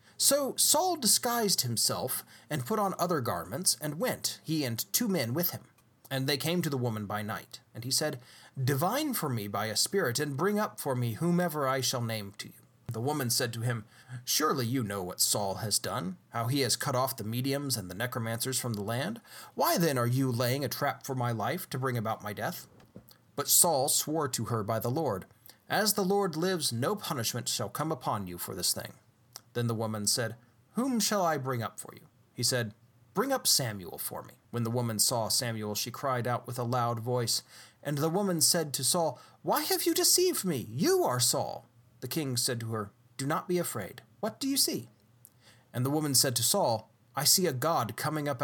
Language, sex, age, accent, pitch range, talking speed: English, male, 30-49, American, 115-155 Hz, 215 wpm